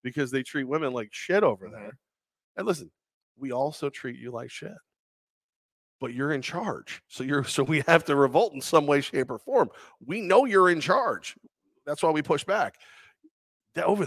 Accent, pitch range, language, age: American, 115-170 Hz, English, 40-59